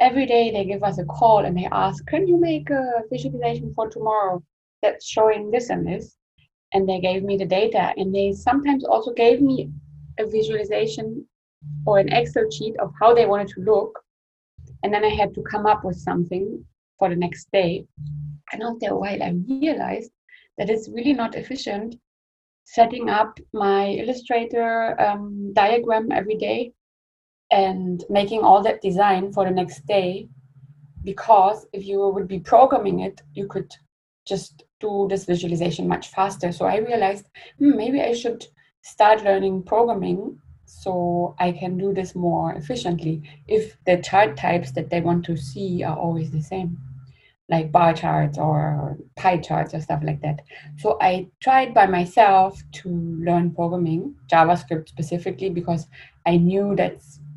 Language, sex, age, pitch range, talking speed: Romanian, female, 20-39, 170-215 Hz, 165 wpm